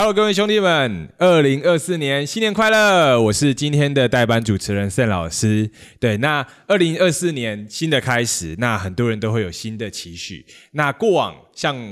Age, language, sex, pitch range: 20-39, Chinese, male, 105-150 Hz